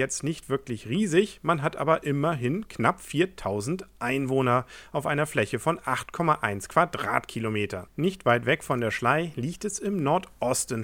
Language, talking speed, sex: English, 150 wpm, male